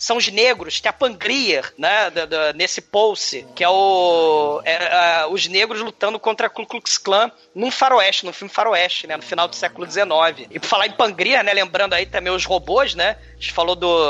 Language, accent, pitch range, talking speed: Portuguese, Brazilian, 175-235 Hz, 215 wpm